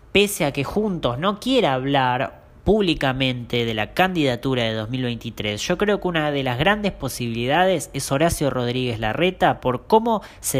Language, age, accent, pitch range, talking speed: English, 20-39, Argentinian, 130-200 Hz, 160 wpm